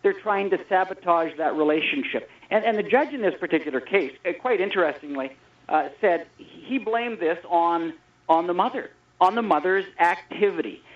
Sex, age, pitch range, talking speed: male, 50-69, 180-255 Hz, 165 wpm